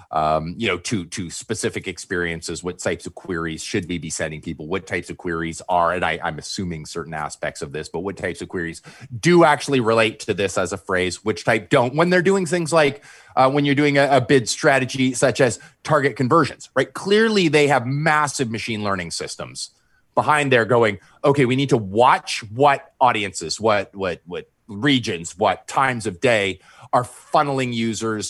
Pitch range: 90-135 Hz